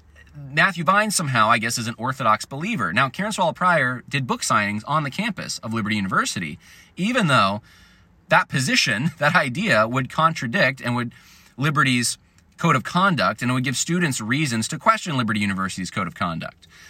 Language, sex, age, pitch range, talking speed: English, male, 30-49, 100-140 Hz, 175 wpm